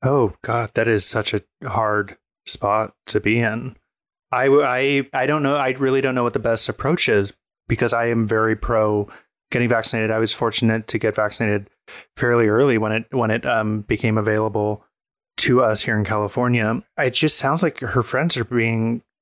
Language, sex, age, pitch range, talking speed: English, male, 30-49, 110-125 Hz, 185 wpm